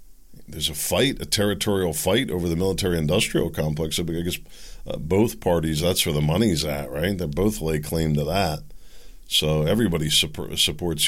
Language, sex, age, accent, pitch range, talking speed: English, male, 50-69, American, 85-110 Hz, 170 wpm